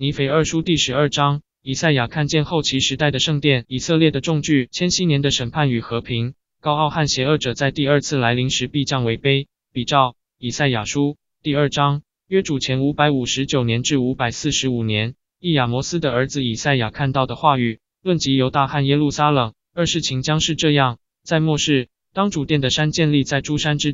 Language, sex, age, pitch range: Chinese, male, 20-39, 125-150 Hz